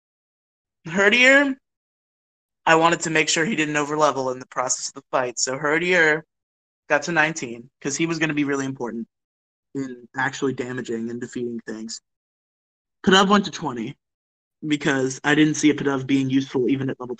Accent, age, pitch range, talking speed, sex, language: American, 20-39, 125-170 Hz, 170 wpm, male, English